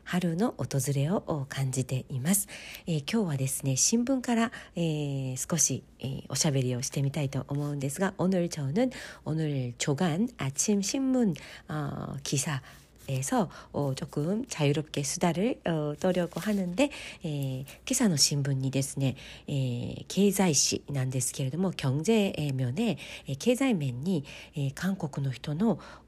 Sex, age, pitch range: female, 40-59, 140-215 Hz